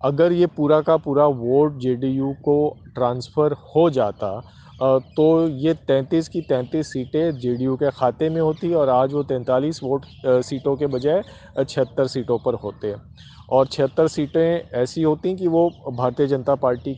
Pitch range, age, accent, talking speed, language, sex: 130-155 Hz, 40-59, native, 160 wpm, Hindi, male